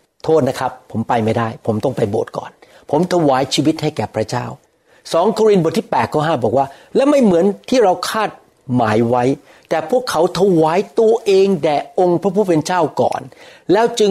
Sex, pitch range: male, 115-170 Hz